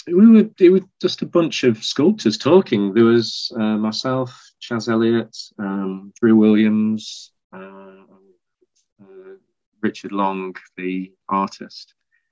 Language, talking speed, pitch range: English, 120 wpm, 90-110 Hz